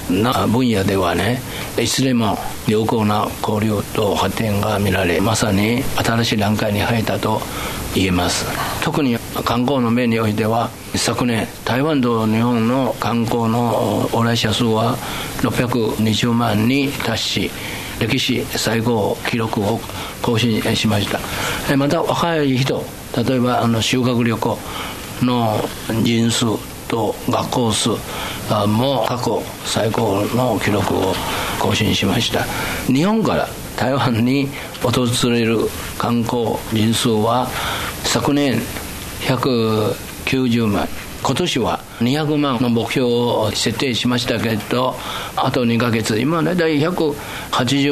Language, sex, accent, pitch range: Japanese, male, native, 110-125 Hz